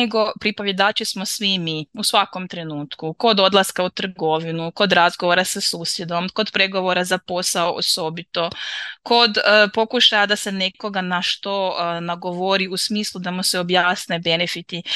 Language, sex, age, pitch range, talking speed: Croatian, female, 20-39, 175-215 Hz, 155 wpm